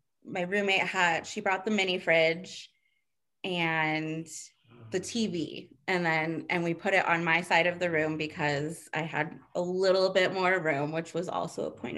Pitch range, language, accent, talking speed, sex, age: 160-195 Hz, English, American, 180 wpm, female, 20-39